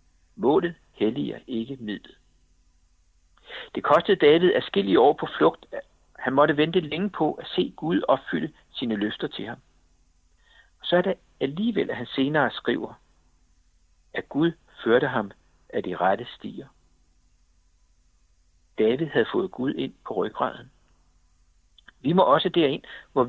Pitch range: 80-130 Hz